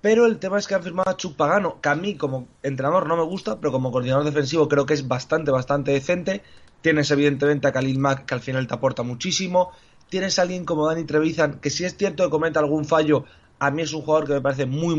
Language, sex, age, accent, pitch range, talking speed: Spanish, male, 20-39, Spanish, 135-170 Hz, 250 wpm